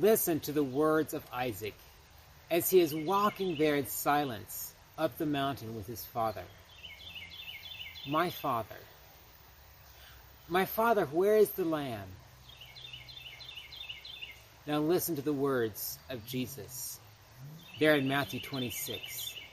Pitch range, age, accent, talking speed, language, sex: 105-170 Hz, 40-59, American, 115 wpm, English, male